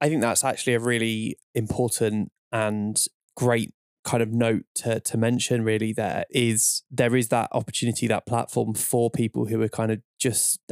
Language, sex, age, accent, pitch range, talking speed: English, male, 20-39, British, 110-125 Hz, 175 wpm